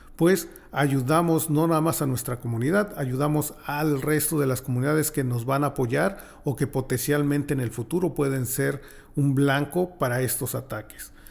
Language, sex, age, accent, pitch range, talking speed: English, male, 40-59, Mexican, 130-155 Hz, 170 wpm